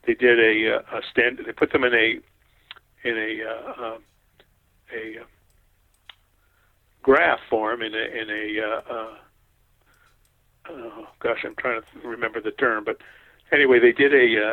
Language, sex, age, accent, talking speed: English, male, 50-69, American, 150 wpm